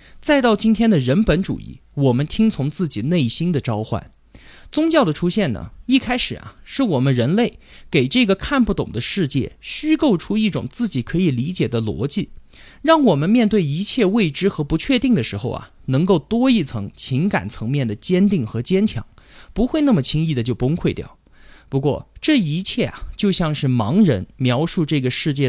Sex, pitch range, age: male, 130-205 Hz, 20-39